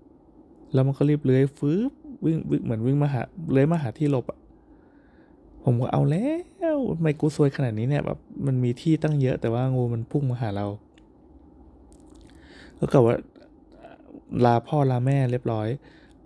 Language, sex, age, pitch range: Thai, male, 20-39, 115-155 Hz